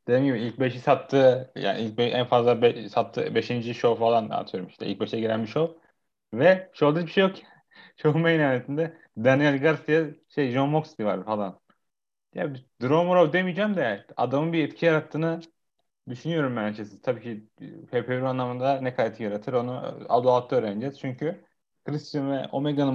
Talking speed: 170 wpm